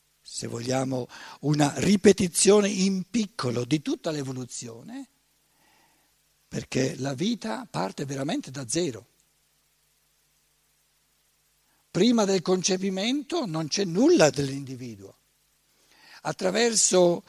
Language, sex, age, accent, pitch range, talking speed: Italian, male, 60-79, native, 140-210 Hz, 85 wpm